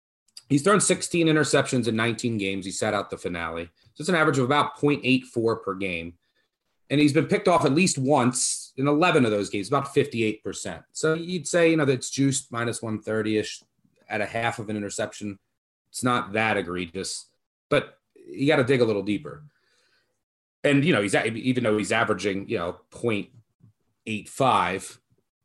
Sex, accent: male, American